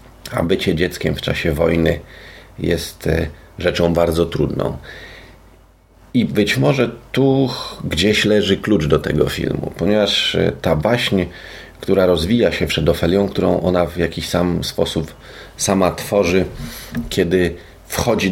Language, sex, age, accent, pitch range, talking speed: Polish, male, 40-59, native, 80-90 Hz, 125 wpm